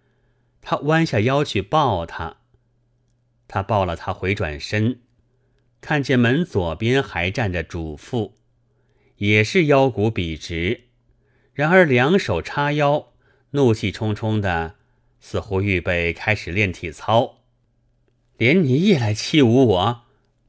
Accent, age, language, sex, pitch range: native, 30-49, Chinese, male, 105-130 Hz